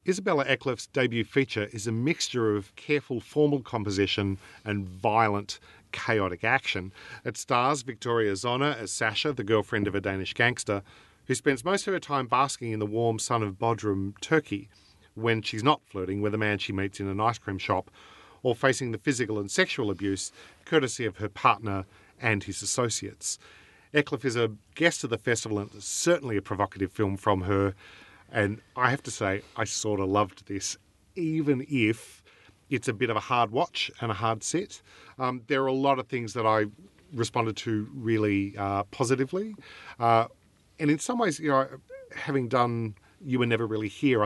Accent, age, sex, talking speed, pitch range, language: Australian, 40-59, male, 185 wpm, 100-130 Hz, English